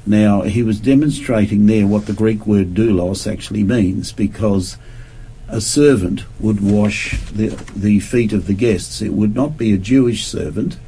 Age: 50-69